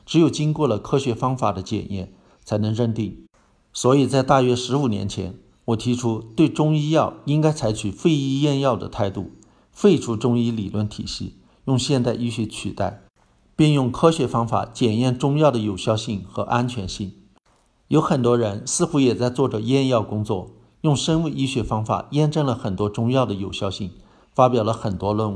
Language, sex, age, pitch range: Chinese, male, 50-69, 105-135 Hz